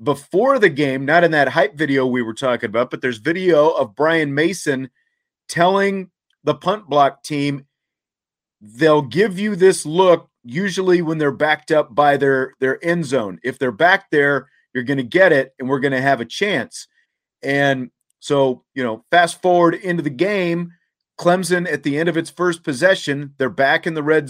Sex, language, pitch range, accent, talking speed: male, English, 135-175 Hz, American, 190 wpm